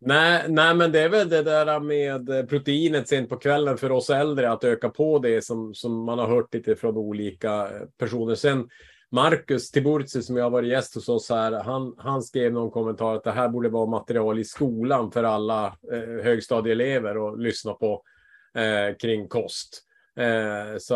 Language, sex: Swedish, male